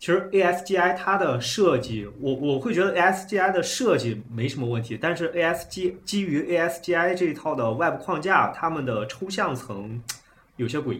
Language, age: Chinese, 20-39